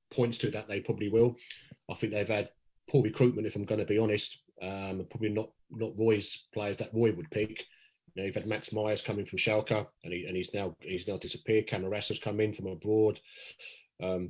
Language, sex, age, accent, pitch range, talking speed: English, male, 30-49, British, 105-125 Hz, 220 wpm